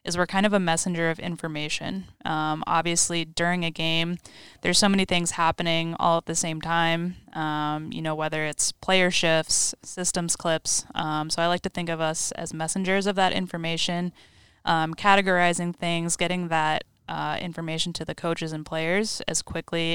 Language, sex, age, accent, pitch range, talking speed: English, female, 10-29, American, 160-175 Hz, 175 wpm